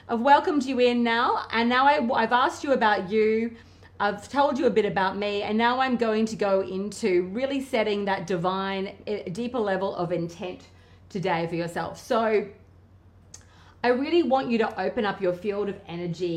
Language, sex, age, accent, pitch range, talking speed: English, female, 30-49, Australian, 155-215 Hz, 185 wpm